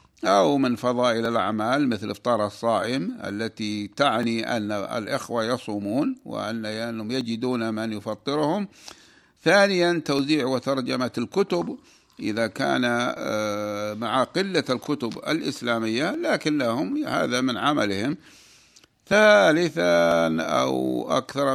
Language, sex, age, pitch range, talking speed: Arabic, male, 60-79, 115-155 Hz, 95 wpm